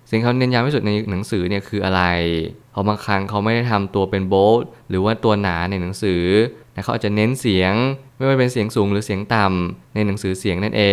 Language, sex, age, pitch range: Thai, male, 20-39, 100-120 Hz